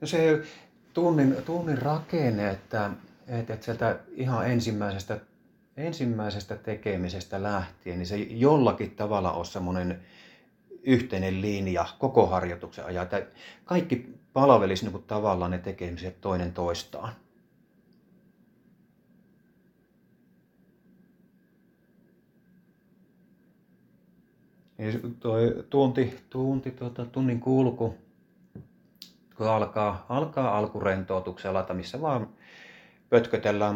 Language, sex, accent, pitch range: Finnish, male, native, 100-125 Hz